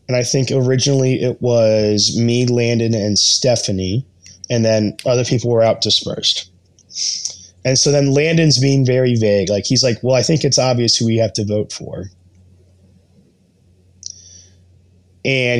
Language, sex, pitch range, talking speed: English, male, 95-130 Hz, 150 wpm